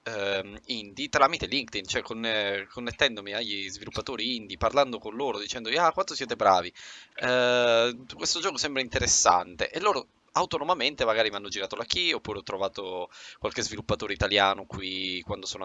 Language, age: Italian, 20-39